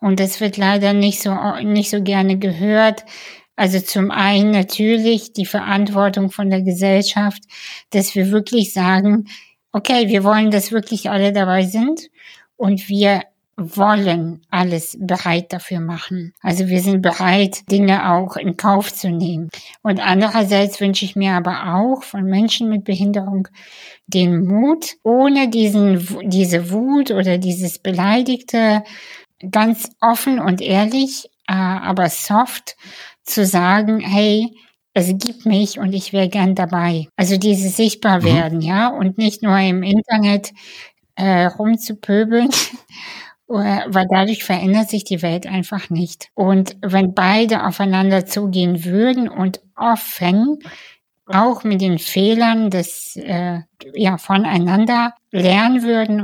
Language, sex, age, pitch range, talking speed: German, female, 60-79, 185-215 Hz, 130 wpm